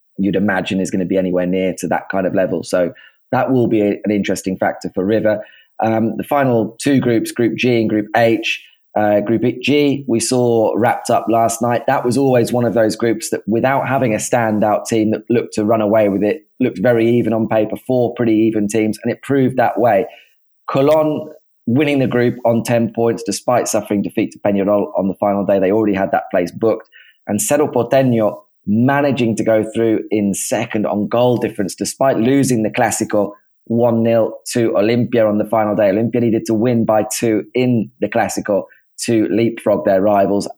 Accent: British